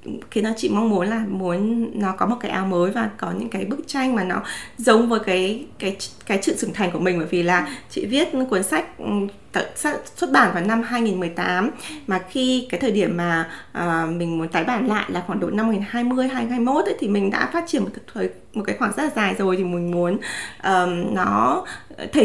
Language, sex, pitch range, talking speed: Vietnamese, female, 190-260 Hz, 215 wpm